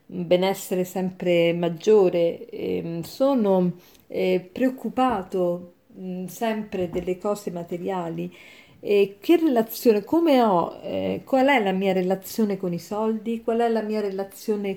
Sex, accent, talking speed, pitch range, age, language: female, native, 115 wpm, 185-235 Hz, 40-59, Italian